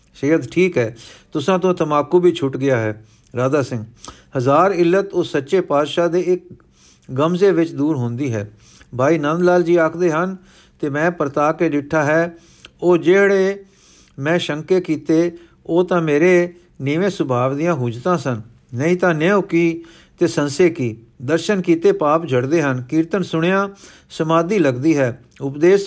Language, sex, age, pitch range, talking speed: Punjabi, male, 50-69, 140-180 Hz, 155 wpm